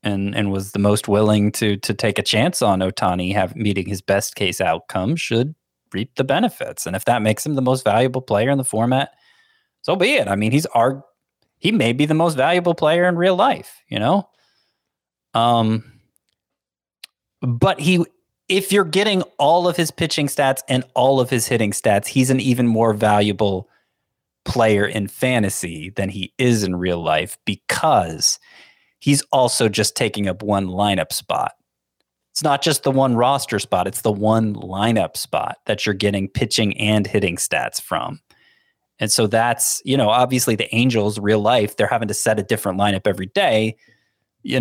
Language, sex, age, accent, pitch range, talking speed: English, male, 20-39, American, 100-135 Hz, 180 wpm